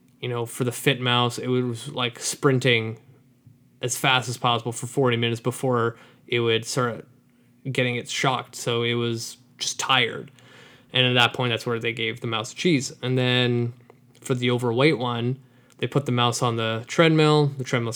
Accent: American